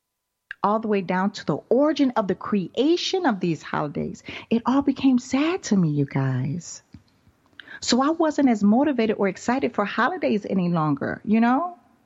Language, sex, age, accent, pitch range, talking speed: English, female, 40-59, American, 160-235 Hz, 170 wpm